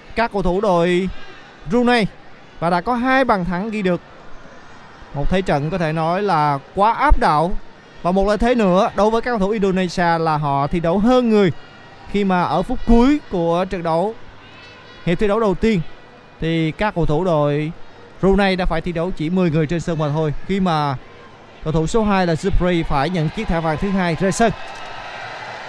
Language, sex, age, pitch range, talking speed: Vietnamese, male, 20-39, 170-220 Hz, 205 wpm